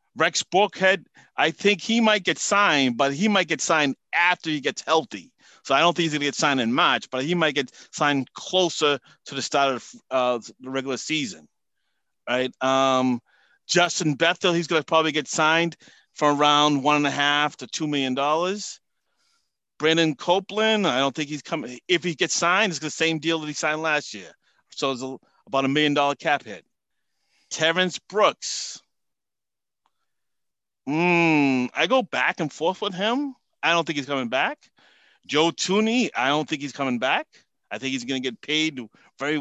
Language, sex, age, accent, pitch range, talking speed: English, male, 30-49, American, 135-175 Hz, 185 wpm